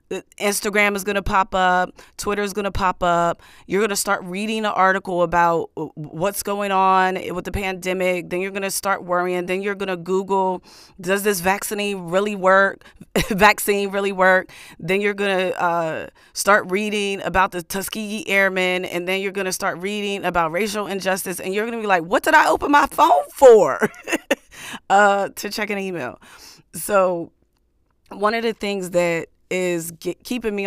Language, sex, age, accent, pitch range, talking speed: English, female, 30-49, American, 165-200 Hz, 180 wpm